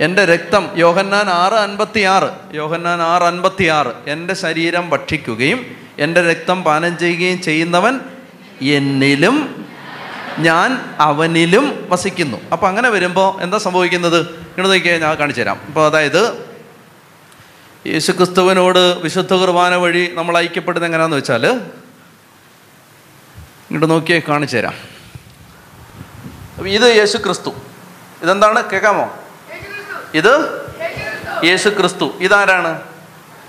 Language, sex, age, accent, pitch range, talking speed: Malayalam, male, 30-49, native, 170-205 Hz, 100 wpm